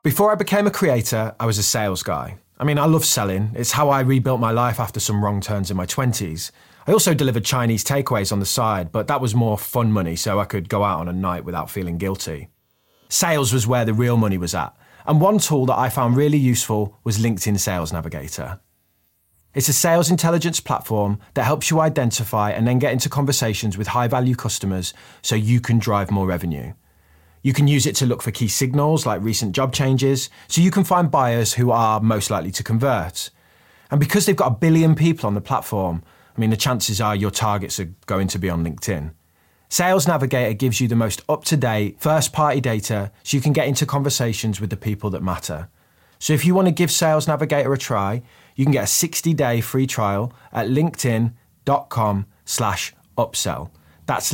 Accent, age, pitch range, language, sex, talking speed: British, 20-39, 100-140 Hz, English, male, 205 wpm